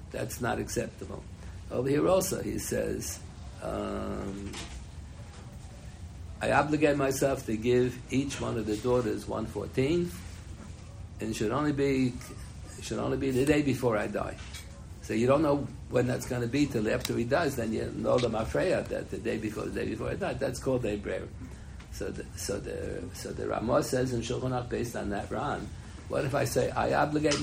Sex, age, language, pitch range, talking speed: male, 60-79, English, 100-135 Hz, 180 wpm